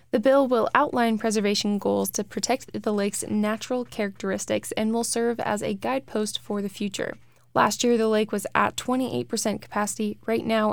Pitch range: 205-245 Hz